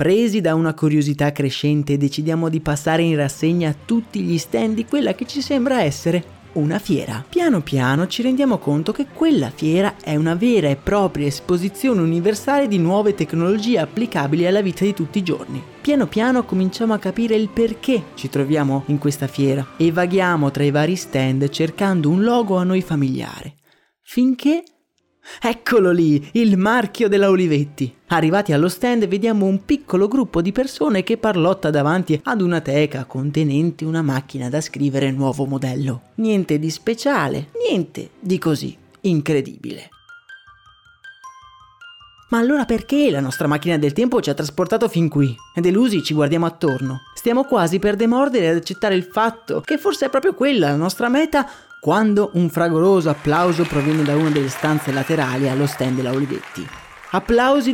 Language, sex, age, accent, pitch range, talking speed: Italian, male, 30-49, native, 150-230 Hz, 160 wpm